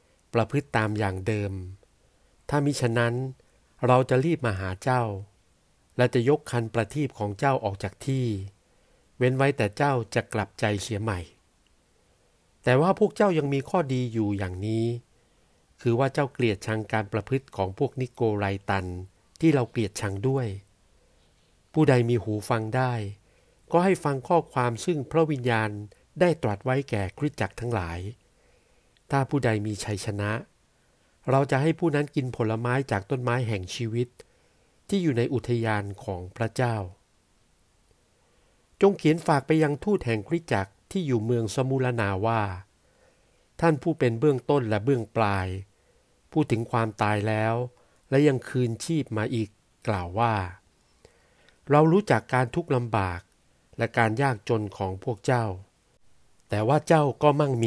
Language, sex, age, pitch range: Thai, male, 60-79, 105-135 Hz